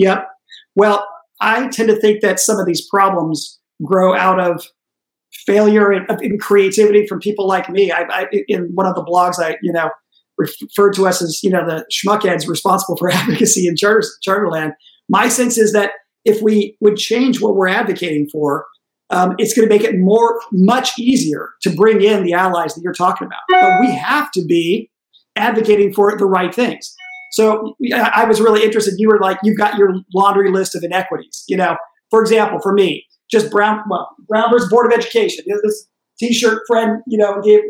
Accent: American